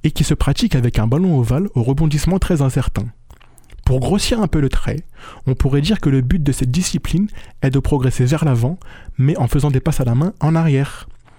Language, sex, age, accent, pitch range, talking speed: French, male, 20-39, French, 125-165 Hz, 220 wpm